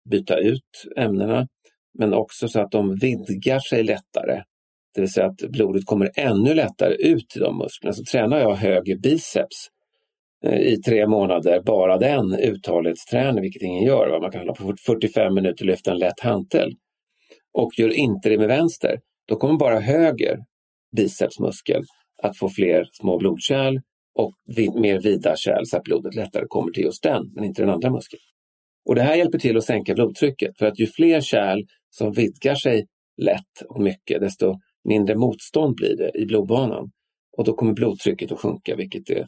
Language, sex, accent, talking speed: English, male, Swedish, 175 wpm